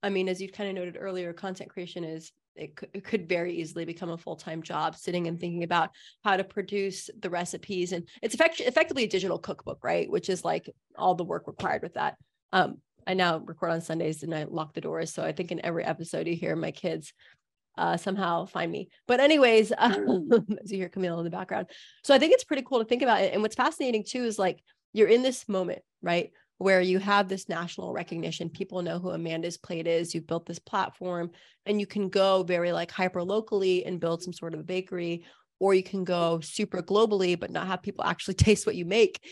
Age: 30-49